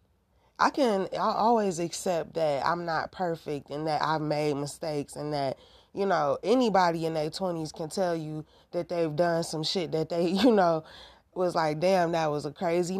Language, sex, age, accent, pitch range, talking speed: English, female, 20-39, American, 155-200 Hz, 190 wpm